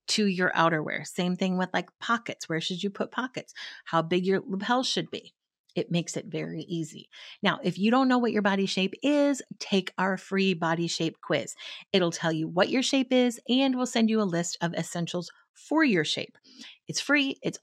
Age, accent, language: 30-49, American, English